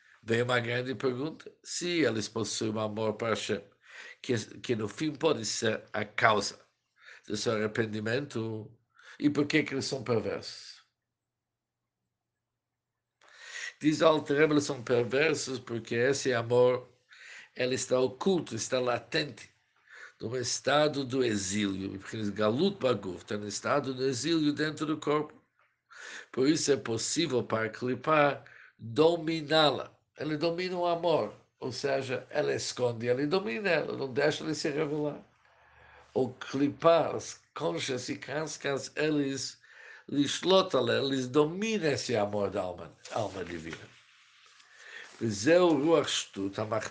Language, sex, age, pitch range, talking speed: Portuguese, male, 60-79, 115-150 Hz, 120 wpm